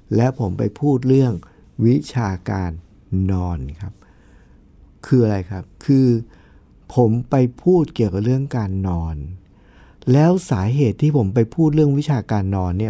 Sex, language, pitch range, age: male, Thai, 95-145 Hz, 60-79